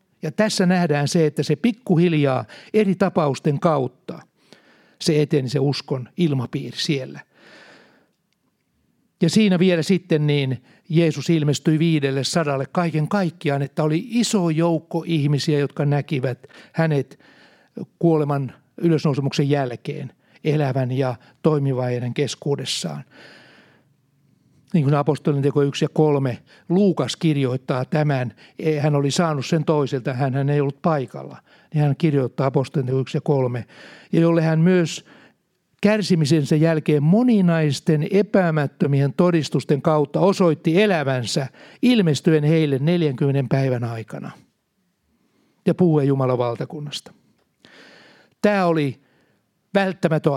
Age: 60-79